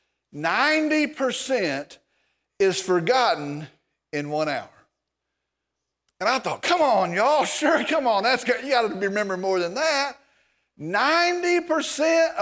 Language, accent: English, American